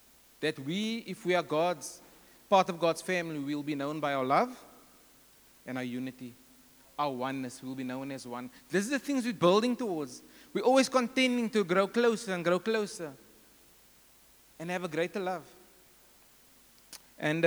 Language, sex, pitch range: English, male, 155-230 Hz